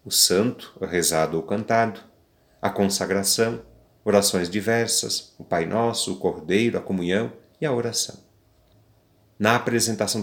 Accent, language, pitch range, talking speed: Brazilian, Portuguese, 95-130 Hz, 130 wpm